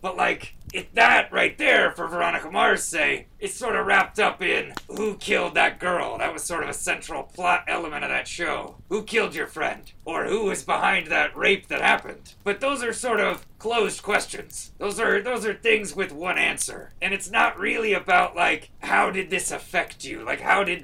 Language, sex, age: English, male, 30-49